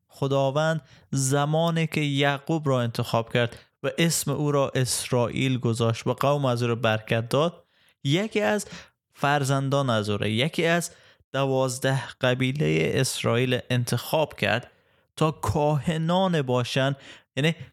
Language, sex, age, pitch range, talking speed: Persian, male, 20-39, 120-150 Hz, 120 wpm